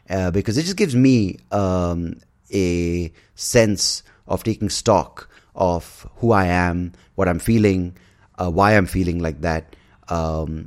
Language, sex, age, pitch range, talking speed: English, male, 30-49, 85-105 Hz, 145 wpm